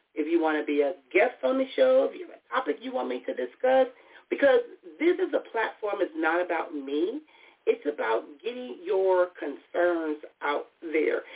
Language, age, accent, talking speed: English, 40-59, American, 190 wpm